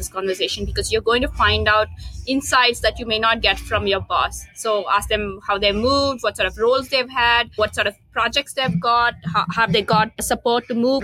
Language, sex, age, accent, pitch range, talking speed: English, female, 20-39, Indian, 215-265 Hz, 230 wpm